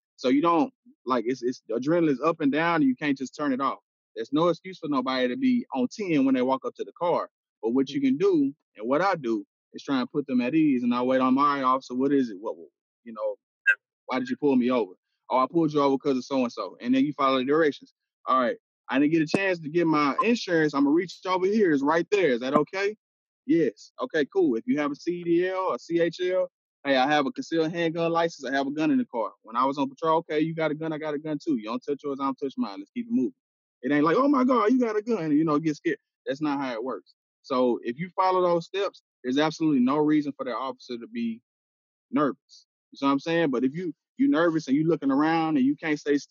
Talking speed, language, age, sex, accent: 275 wpm, English, 20-39, male, American